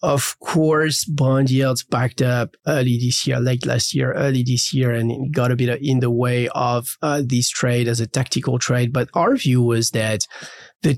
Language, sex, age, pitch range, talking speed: English, male, 30-49, 120-140 Hz, 195 wpm